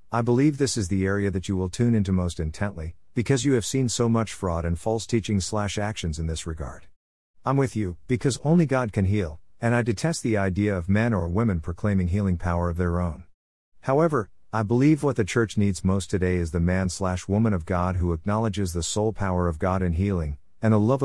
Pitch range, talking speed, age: 90-115 Hz, 220 wpm, 50-69